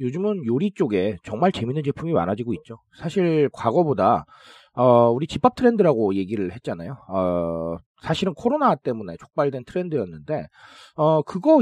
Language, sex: Korean, male